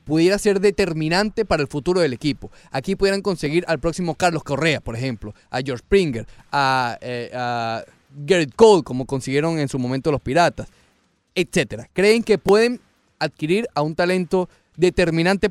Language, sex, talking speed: Spanish, male, 160 wpm